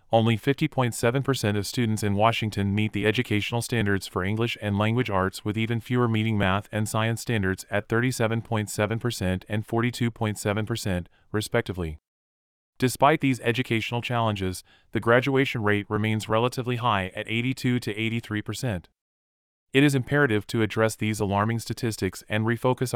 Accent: American